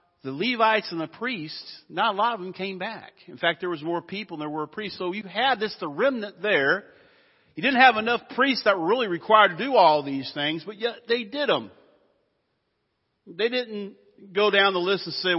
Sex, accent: male, American